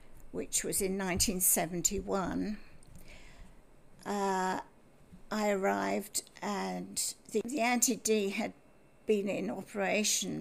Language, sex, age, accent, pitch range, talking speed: English, female, 60-79, British, 180-210 Hz, 80 wpm